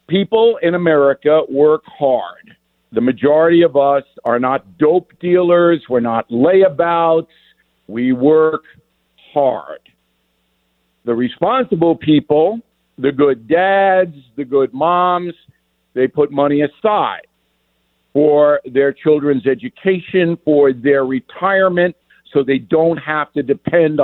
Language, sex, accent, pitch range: English, male, American, 140-185 Hz